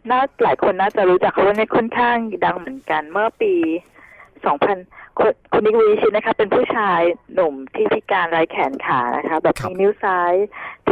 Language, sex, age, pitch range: Thai, female, 20-39, 175-220 Hz